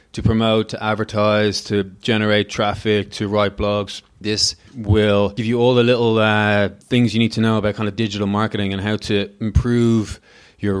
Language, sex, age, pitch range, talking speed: English, male, 20-39, 105-120 Hz, 185 wpm